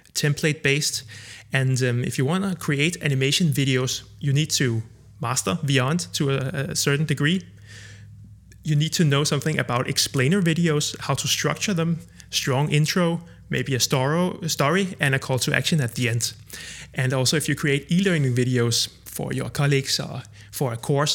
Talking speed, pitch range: 175 wpm, 130-160 Hz